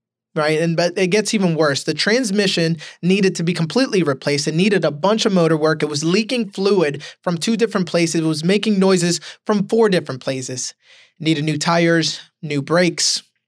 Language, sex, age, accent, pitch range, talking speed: English, male, 20-39, American, 160-210 Hz, 190 wpm